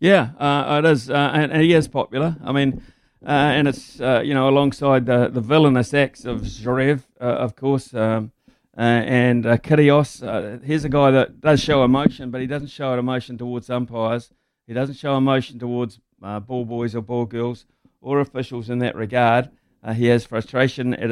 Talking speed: 195 wpm